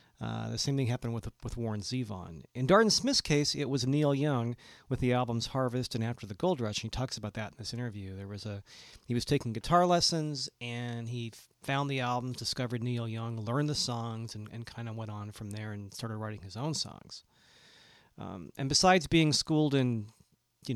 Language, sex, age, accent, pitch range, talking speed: English, male, 40-59, American, 115-145 Hz, 215 wpm